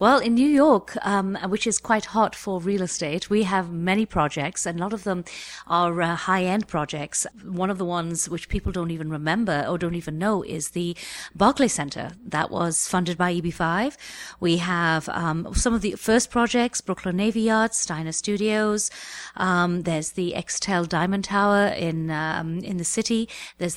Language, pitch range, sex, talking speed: English, 165-215 Hz, female, 180 wpm